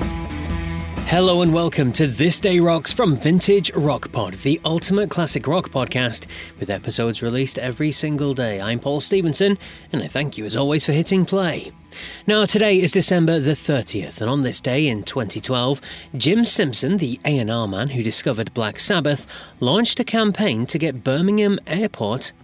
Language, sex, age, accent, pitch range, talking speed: English, male, 30-49, British, 120-175 Hz, 165 wpm